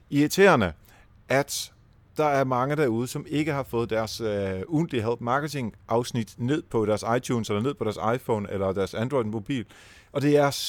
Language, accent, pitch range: Danish, native, 105-140 Hz